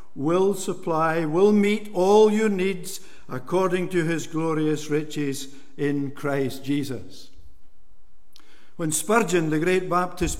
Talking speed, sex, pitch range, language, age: 115 wpm, male, 150-205 Hz, English, 60-79